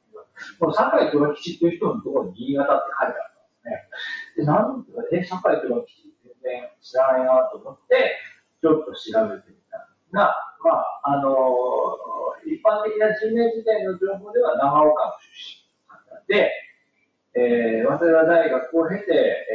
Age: 40-59